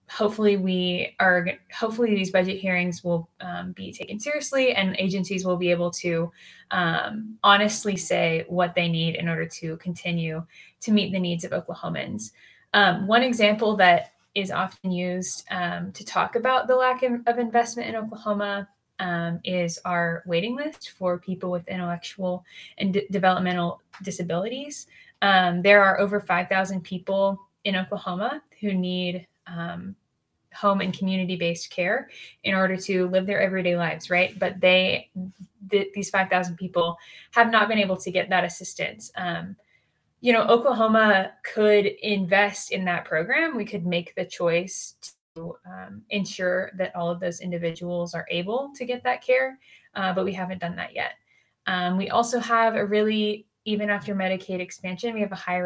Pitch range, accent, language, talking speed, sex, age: 175-210 Hz, American, English, 160 wpm, female, 10-29